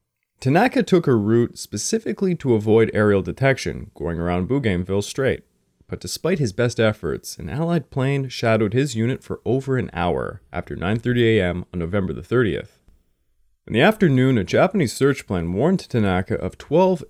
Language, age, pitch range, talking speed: English, 30-49, 95-130 Hz, 160 wpm